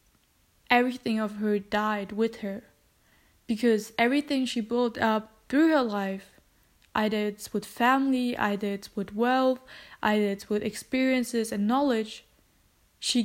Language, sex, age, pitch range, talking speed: English, female, 10-29, 210-240 Hz, 130 wpm